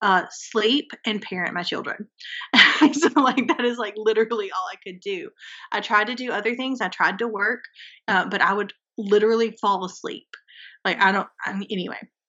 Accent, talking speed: American, 190 wpm